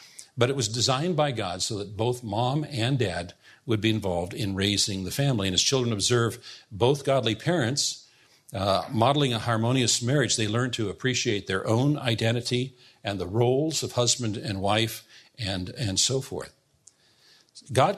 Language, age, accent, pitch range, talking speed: English, 50-69, American, 105-130 Hz, 165 wpm